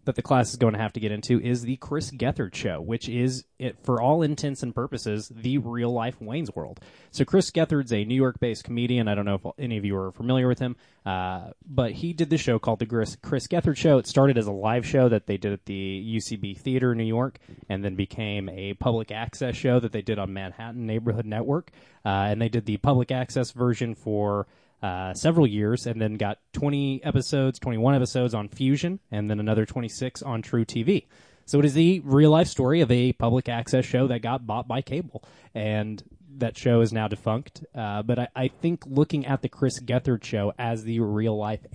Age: 20-39